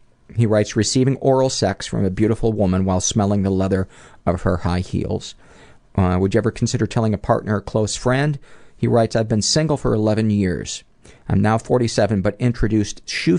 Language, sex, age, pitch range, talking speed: English, male, 50-69, 95-115 Hz, 190 wpm